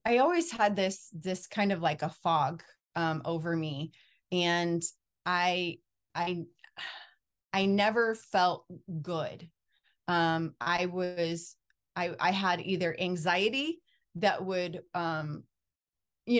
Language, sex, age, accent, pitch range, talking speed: English, female, 30-49, American, 165-195 Hz, 115 wpm